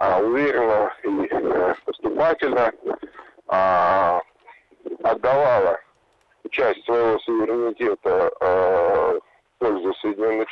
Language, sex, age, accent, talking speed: Russian, male, 50-69, native, 55 wpm